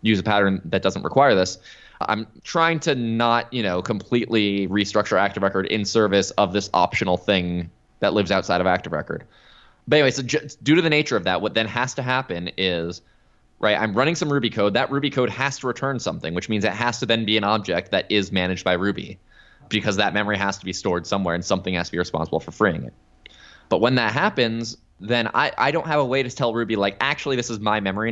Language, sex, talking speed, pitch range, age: English, male, 235 wpm, 95-120 Hz, 20-39